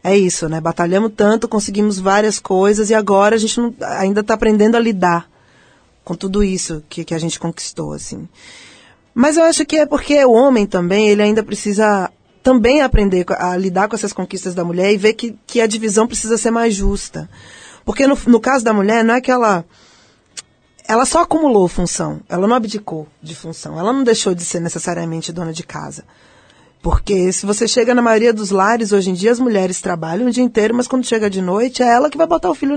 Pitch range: 180-235 Hz